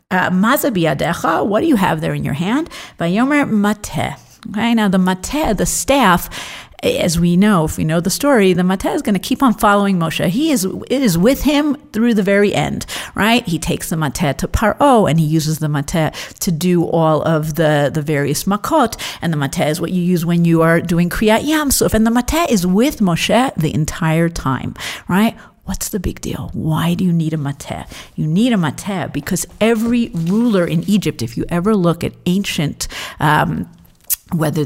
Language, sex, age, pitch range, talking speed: English, female, 50-69, 165-230 Hz, 195 wpm